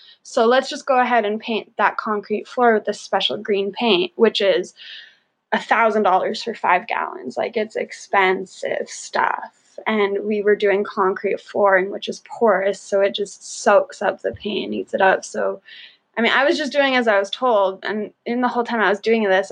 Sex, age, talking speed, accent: female, 20-39, 200 wpm, American